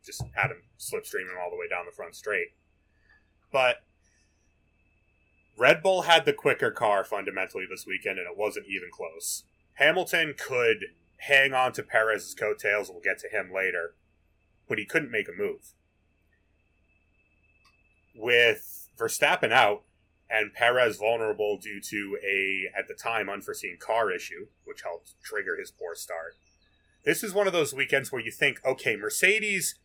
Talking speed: 155 wpm